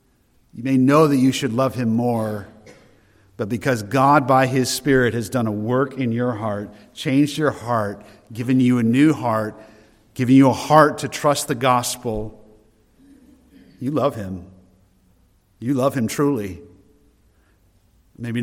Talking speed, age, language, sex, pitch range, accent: 150 wpm, 50-69, English, male, 100-135 Hz, American